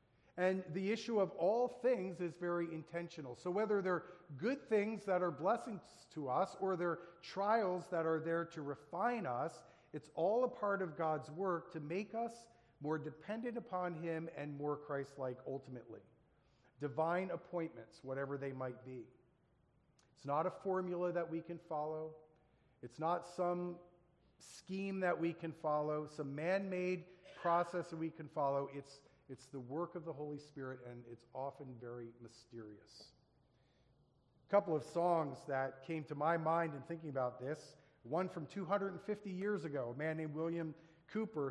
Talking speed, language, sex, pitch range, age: 165 wpm, English, male, 140-175 Hz, 40-59